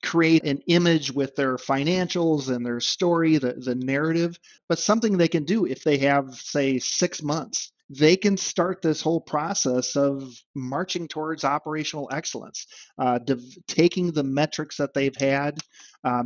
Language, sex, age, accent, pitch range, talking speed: English, male, 50-69, American, 135-160 Hz, 160 wpm